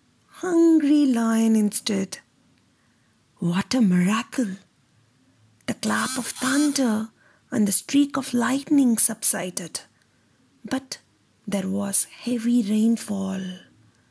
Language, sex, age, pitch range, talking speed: Tamil, female, 30-49, 190-250 Hz, 90 wpm